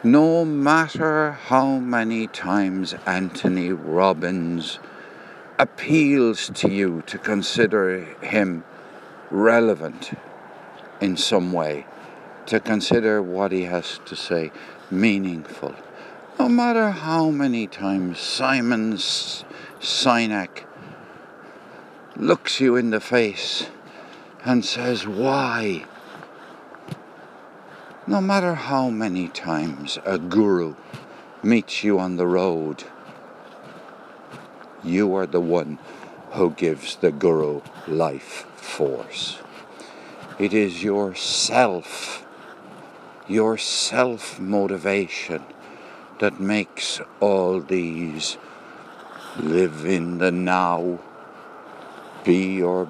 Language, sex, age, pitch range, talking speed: English, male, 60-79, 90-120 Hz, 85 wpm